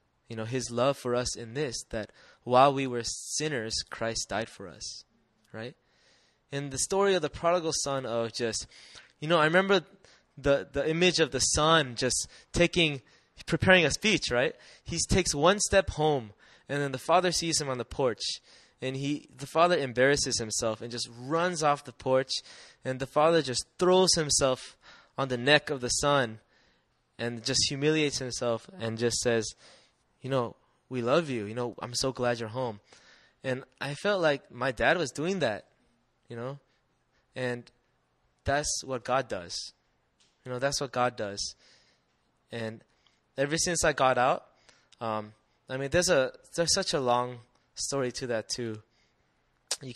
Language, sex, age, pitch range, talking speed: English, male, 20-39, 120-150 Hz, 170 wpm